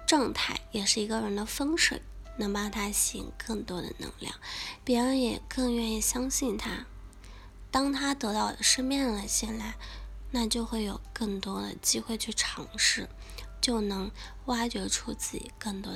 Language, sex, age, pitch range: Chinese, female, 20-39, 190-250 Hz